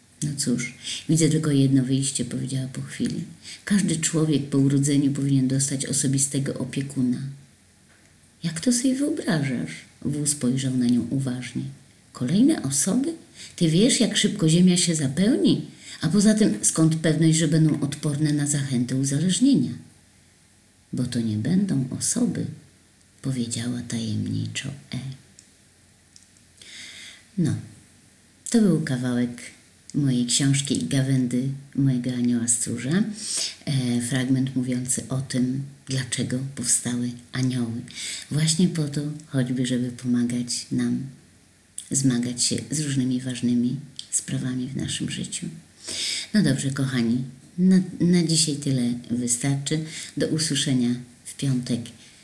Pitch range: 120-145 Hz